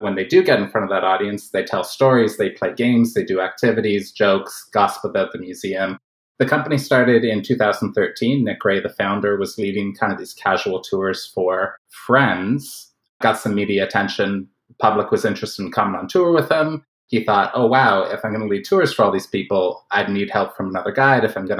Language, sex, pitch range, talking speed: English, male, 95-120 Hz, 215 wpm